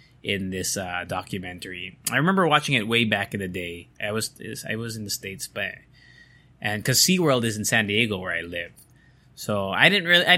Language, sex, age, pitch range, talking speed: English, male, 20-39, 105-140 Hz, 210 wpm